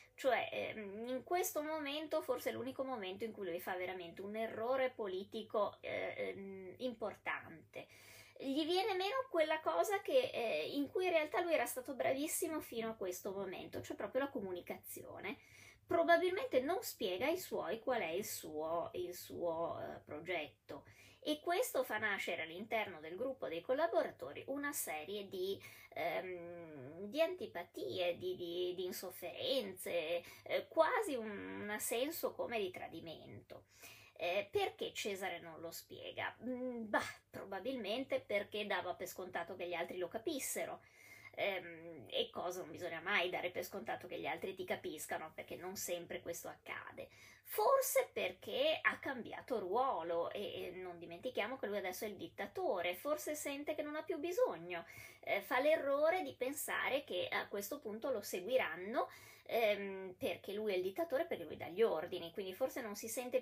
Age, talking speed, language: 20-39, 150 wpm, Italian